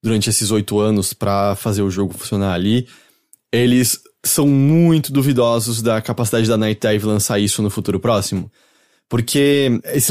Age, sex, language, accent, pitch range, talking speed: 20-39, male, English, Brazilian, 105-140 Hz, 155 wpm